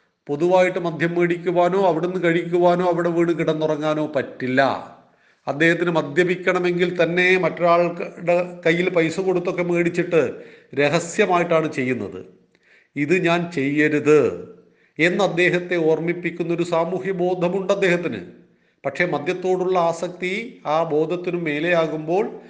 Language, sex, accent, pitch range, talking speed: Malayalam, male, native, 150-180 Hz, 90 wpm